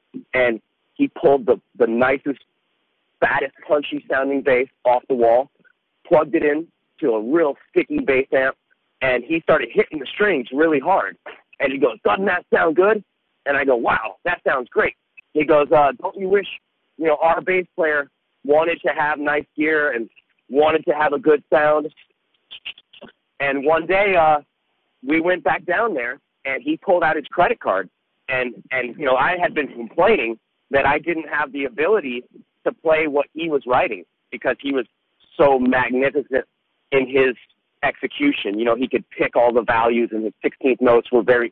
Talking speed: 180 wpm